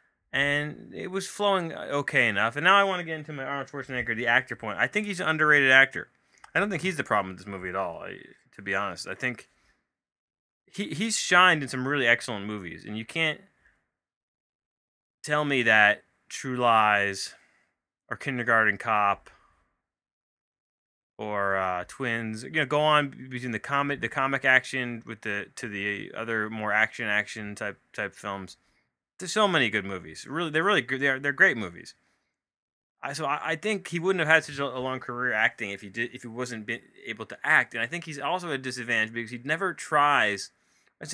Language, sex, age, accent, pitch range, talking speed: English, male, 20-39, American, 110-155 Hz, 190 wpm